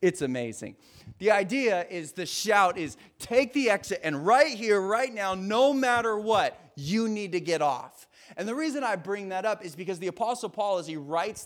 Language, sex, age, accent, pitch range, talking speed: English, male, 30-49, American, 155-225 Hz, 205 wpm